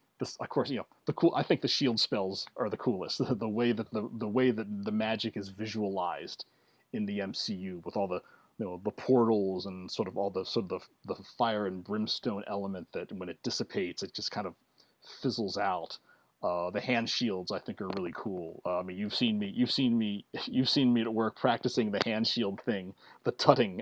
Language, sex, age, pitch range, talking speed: English, male, 30-49, 105-125 Hz, 225 wpm